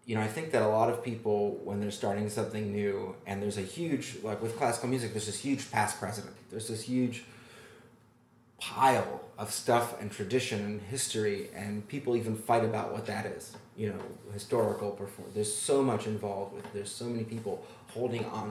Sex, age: male, 30-49